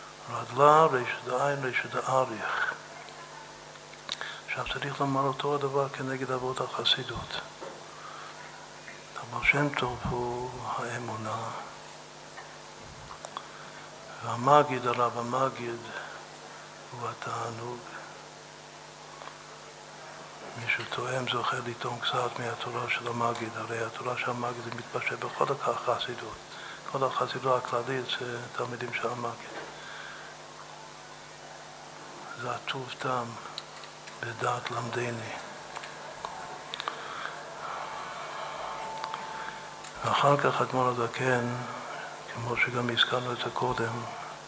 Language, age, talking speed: Hebrew, 60-79, 75 wpm